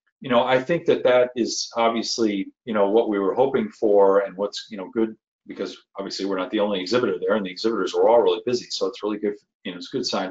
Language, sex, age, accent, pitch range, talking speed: English, male, 40-59, American, 100-145 Hz, 260 wpm